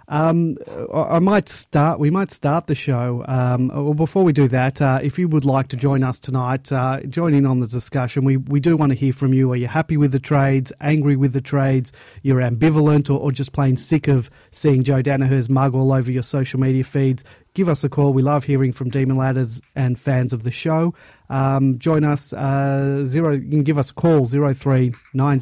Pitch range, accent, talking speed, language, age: 130-145 Hz, Australian, 220 wpm, English, 30-49